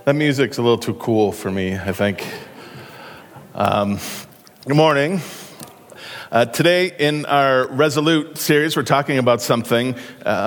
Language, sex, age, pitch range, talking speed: English, male, 40-59, 115-140 Hz, 140 wpm